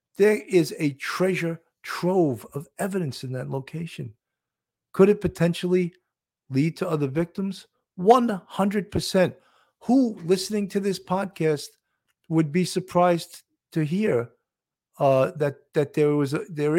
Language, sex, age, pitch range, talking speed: English, male, 50-69, 145-195 Hz, 130 wpm